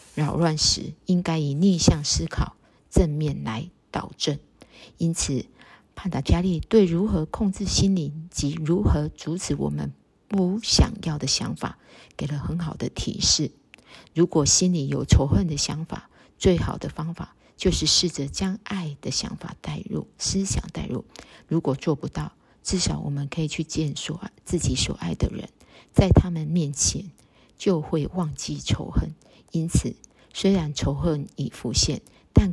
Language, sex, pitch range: Chinese, female, 145-180 Hz